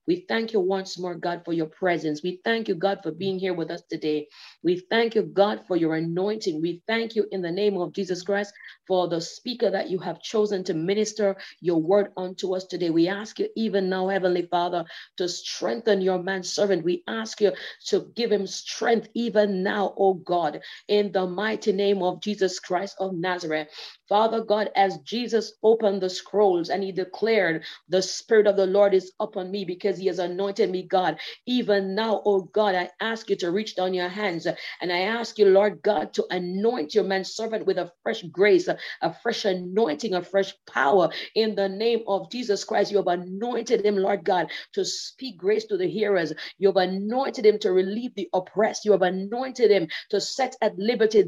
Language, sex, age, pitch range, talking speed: English, female, 40-59, 185-220 Hz, 200 wpm